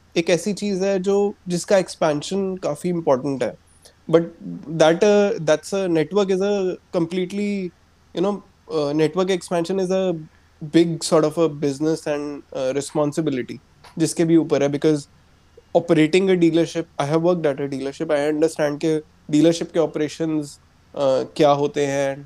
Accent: native